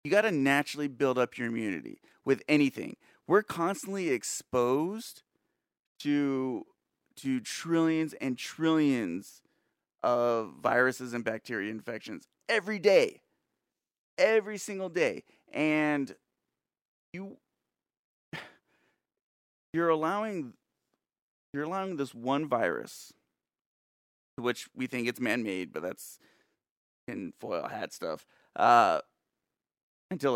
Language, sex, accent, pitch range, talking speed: English, male, American, 120-160 Hz, 100 wpm